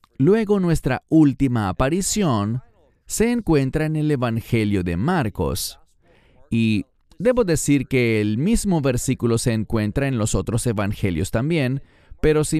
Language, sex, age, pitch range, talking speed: English, male, 30-49, 100-145 Hz, 130 wpm